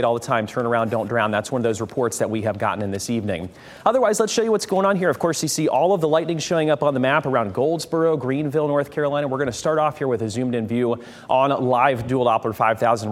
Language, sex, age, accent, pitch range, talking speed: English, male, 30-49, American, 115-155 Hz, 280 wpm